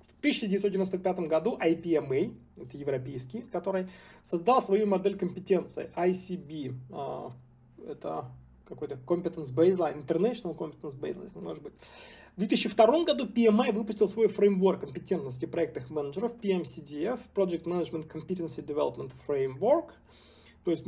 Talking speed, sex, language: 110 wpm, male, Russian